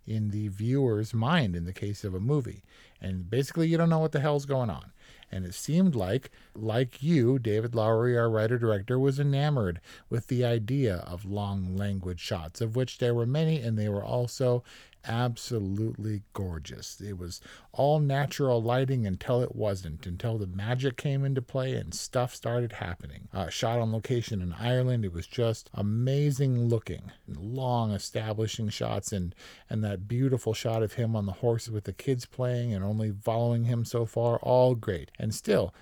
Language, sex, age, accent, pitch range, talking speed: English, male, 40-59, American, 100-130 Hz, 175 wpm